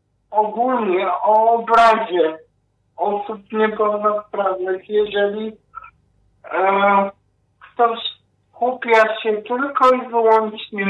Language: Polish